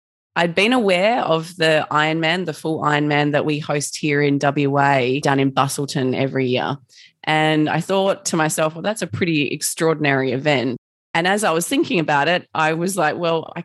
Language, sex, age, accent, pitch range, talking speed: English, female, 20-39, Australian, 145-185 Hz, 190 wpm